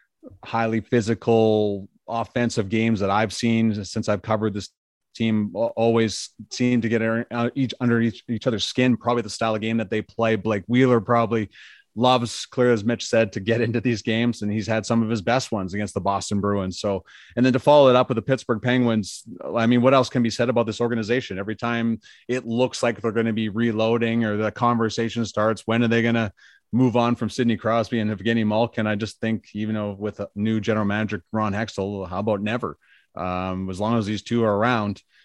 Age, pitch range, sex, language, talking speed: 30-49, 105-120 Hz, male, English, 215 wpm